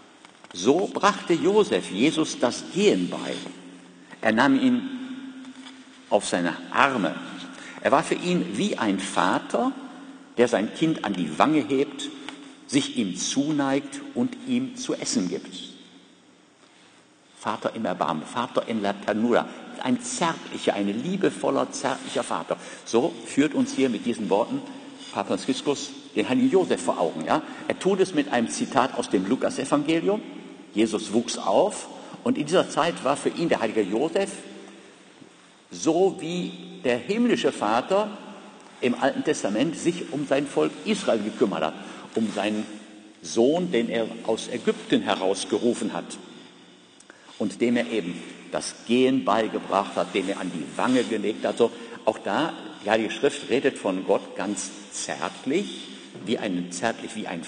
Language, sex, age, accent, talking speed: German, male, 50-69, German, 145 wpm